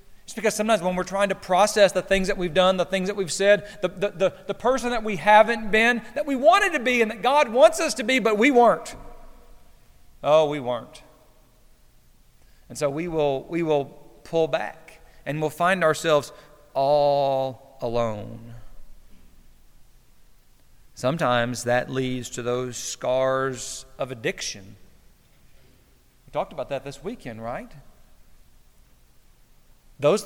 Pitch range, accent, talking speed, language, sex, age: 125-205 Hz, American, 150 wpm, English, male, 40-59